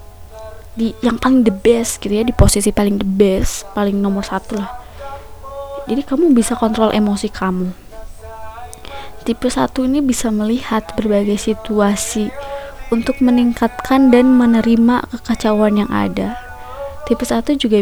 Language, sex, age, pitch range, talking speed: Indonesian, female, 20-39, 200-245 Hz, 130 wpm